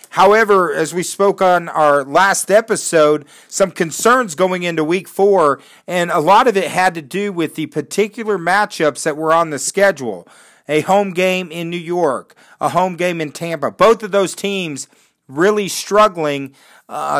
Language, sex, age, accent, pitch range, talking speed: English, male, 40-59, American, 155-200 Hz, 170 wpm